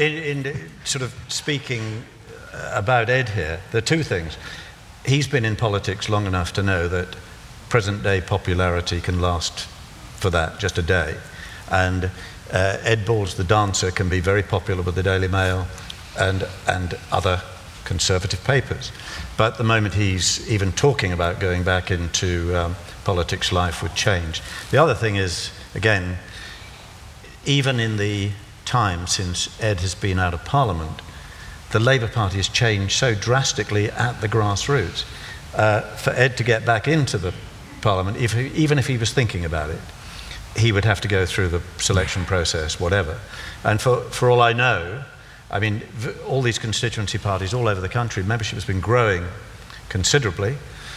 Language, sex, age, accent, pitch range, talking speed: English, male, 50-69, British, 95-115 Hz, 160 wpm